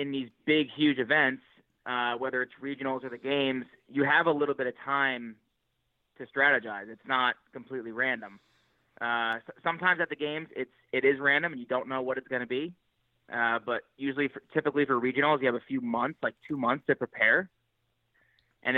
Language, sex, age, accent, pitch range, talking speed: English, male, 20-39, American, 120-140 Hz, 190 wpm